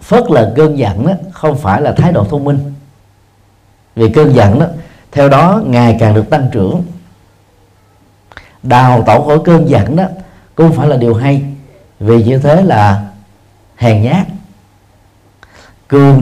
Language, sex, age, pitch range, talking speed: Vietnamese, male, 50-69, 100-145 Hz, 150 wpm